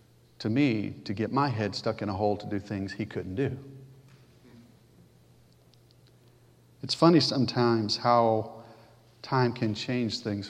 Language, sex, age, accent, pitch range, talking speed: English, male, 50-69, American, 105-120 Hz, 135 wpm